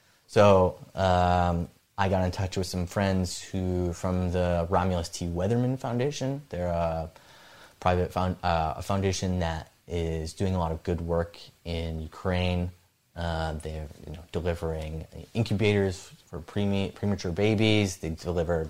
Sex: male